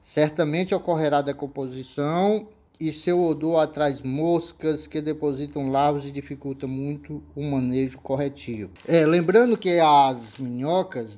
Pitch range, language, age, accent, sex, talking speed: 125-155 Hz, Portuguese, 20-39, Brazilian, male, 120 wpm